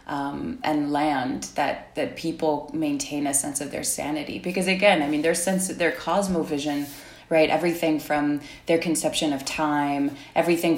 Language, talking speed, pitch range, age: English, 160 wpm, 150-175 Hz, 20-39